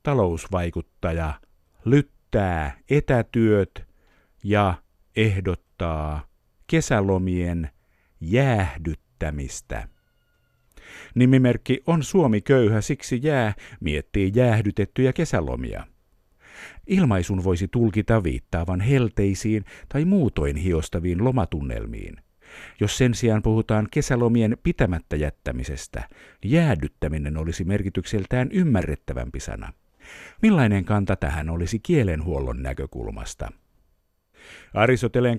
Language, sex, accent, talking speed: Finnish, male, native, 75 wpm